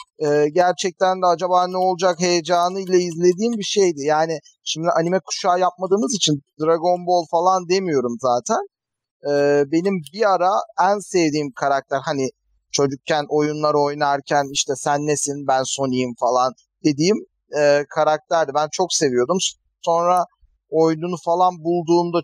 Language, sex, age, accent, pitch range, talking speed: Turkish, male, 40-59, native, 145-185 Hz, 120 wpm